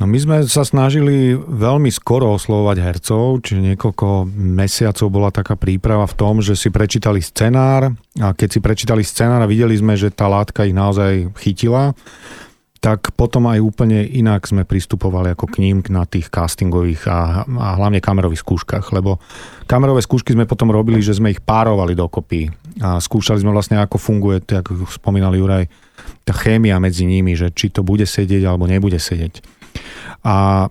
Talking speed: 170 wpm